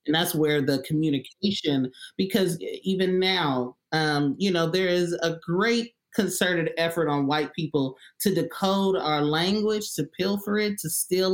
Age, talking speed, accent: 30-49, 155 wpm, American